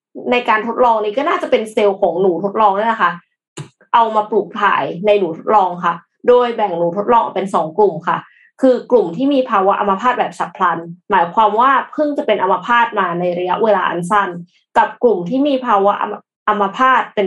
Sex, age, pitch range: female, 20-39, 195-260 Hz